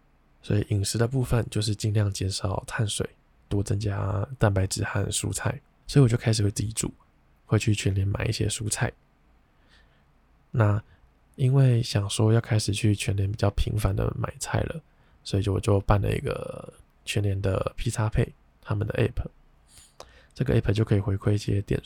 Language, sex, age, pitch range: Chinese, male, 20-39, 100-120 Hz